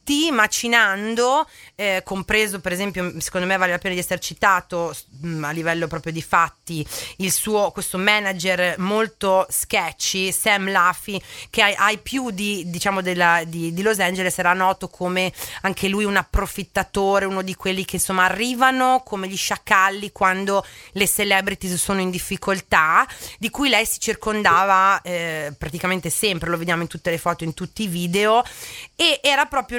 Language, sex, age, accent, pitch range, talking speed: Italian, female, 30-49, native, 175-230 Hz, 160 wpm